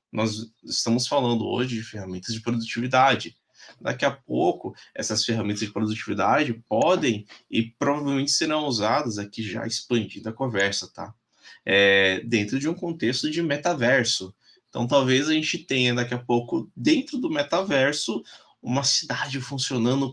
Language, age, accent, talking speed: Portuguese, 20-39, Brazilian, 140 wpm